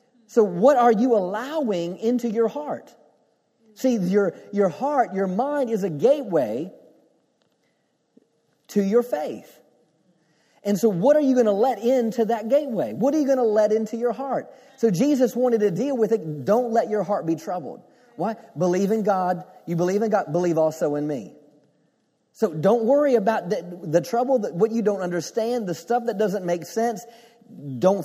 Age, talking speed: 40-59, 180 wpm